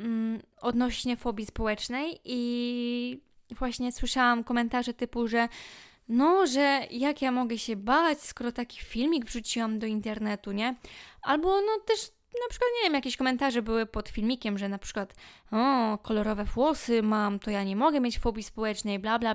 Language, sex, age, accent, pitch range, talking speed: Polish, female, 20-39, native, 215-255 Hz, 160 wpm